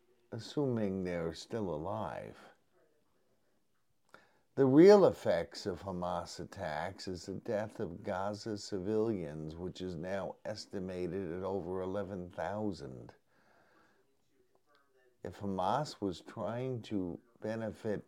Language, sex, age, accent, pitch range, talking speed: English, male, 50-69, American, 100-125 Hz, 95 wpm